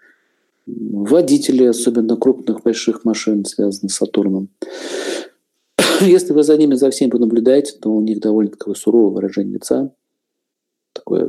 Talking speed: 130 wpm